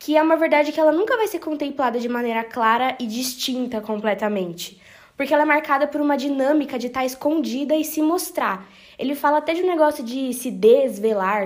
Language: Portuguese